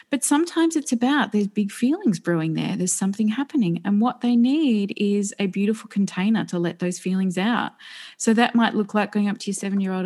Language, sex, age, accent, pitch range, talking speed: English, female, 20-39, Australian, 185-255 Hz, 210 wpm